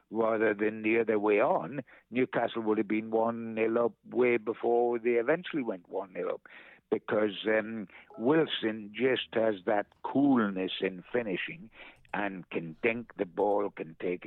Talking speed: 145 wpm